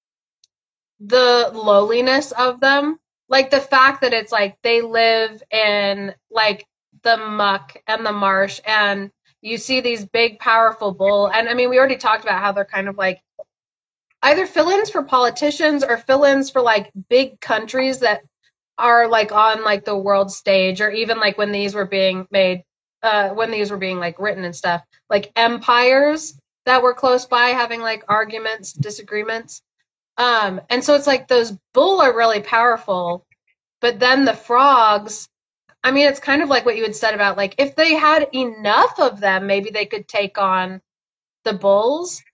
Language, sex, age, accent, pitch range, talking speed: English, female, 20-39, American, 200-250 Hz, 175 wpm